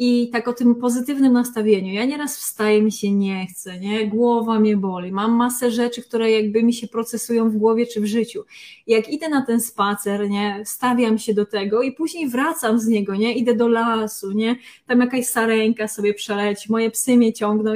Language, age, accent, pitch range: Polish, 20-39, native, 220-255 Hz